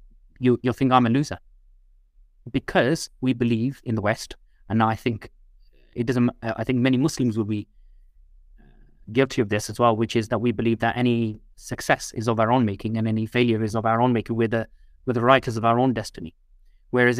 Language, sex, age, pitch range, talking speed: English, male, 30-49, 110-130 Hz, 205 wpm